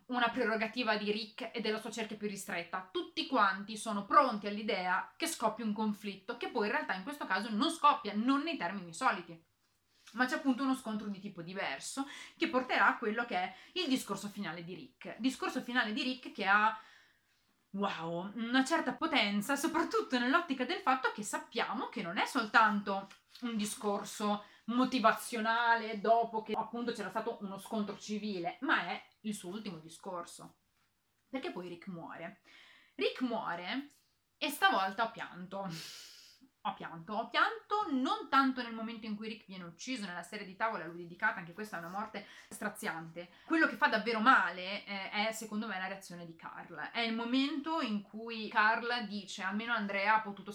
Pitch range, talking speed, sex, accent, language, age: 195-250 Hz, 175 wpm, female, native, Italian, 30-49